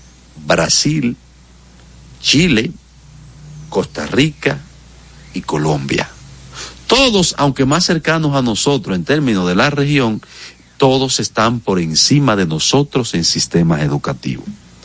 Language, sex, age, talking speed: Spanish, male, 50-69, 105 wpm